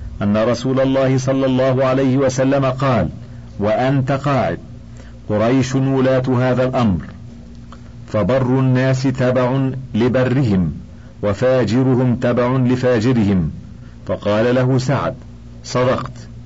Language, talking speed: Arabic, 90 wpm